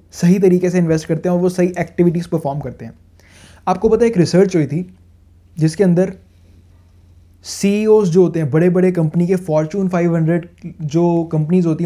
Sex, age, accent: male, 20-39, native